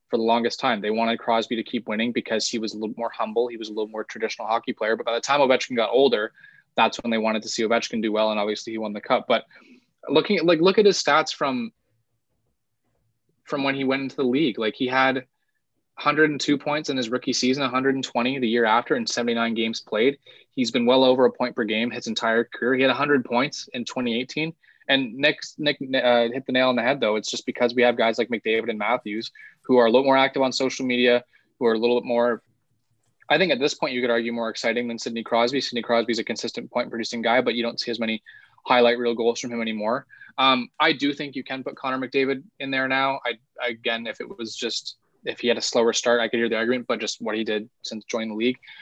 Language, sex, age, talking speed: English, male, 20-39, 250 wpm